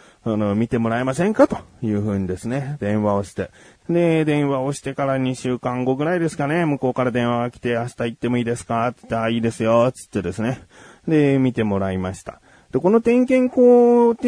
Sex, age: male, 30-49